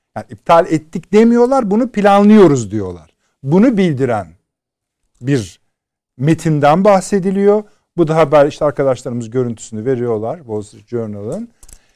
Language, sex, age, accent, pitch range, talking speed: Turkish, male, 50-69, native, 130-195 Hz, 105 wpm